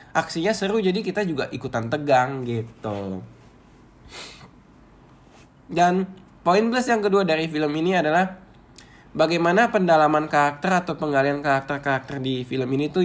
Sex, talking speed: male, 125 wpm